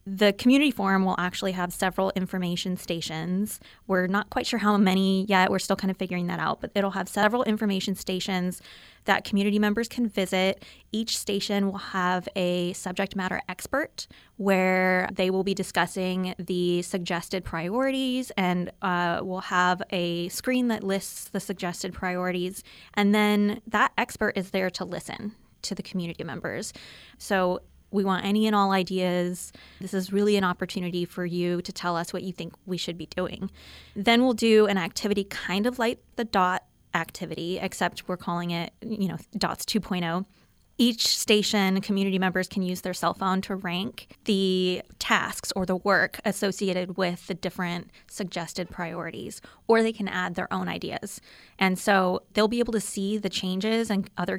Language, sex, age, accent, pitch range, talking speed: English, female, 20-39, American, 180-205 Hz, 170 wpm